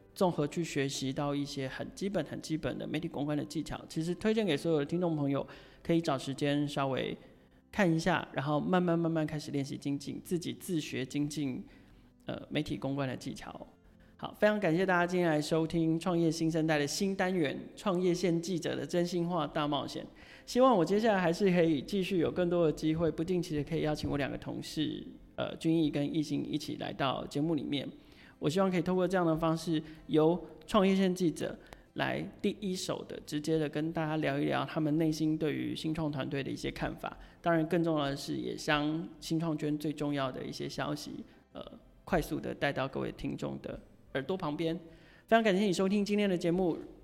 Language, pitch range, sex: Chinese, 150-175 Hz, male